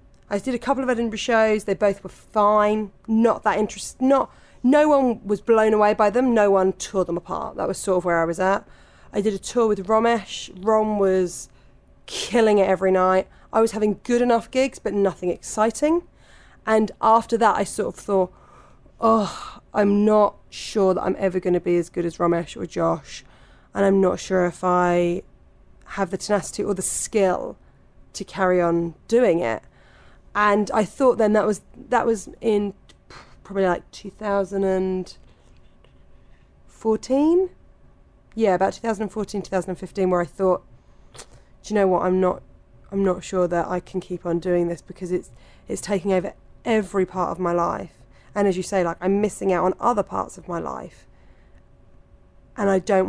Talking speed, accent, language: 175 wpm, British, English